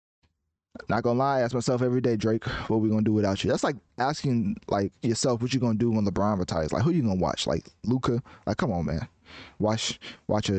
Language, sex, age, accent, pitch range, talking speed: English, male, 20-39, American, 95-120 Hz, 230 wpm